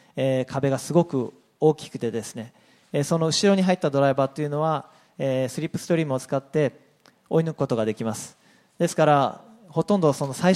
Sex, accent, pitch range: male, native, 135-180 Hz